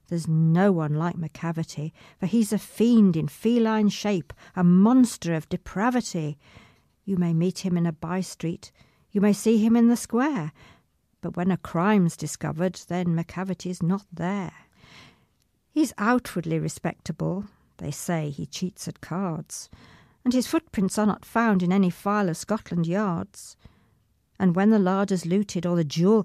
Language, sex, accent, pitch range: English, female, British, 165-210 Hz